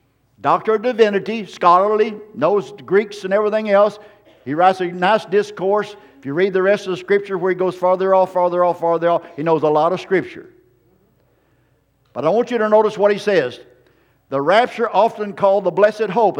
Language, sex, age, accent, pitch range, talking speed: English, male, 50-69, American, 170-215 Hz, 195 wpm